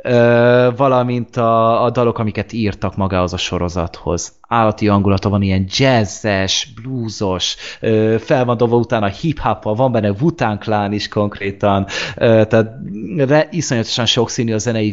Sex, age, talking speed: male, 30-49, 115 wpm